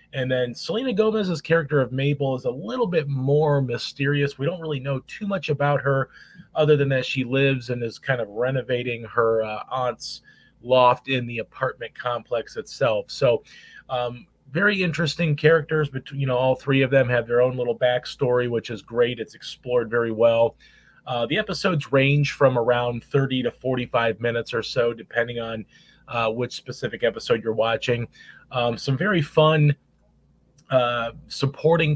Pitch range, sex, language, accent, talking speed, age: 120-145 Hz, male, English, American, 170 wpm, 30-49